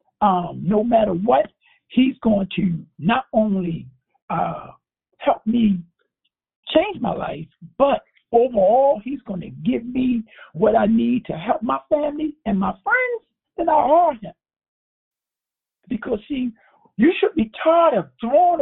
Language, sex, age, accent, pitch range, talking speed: English, male, 60-79, American, 190-285 Hz, 140 wpm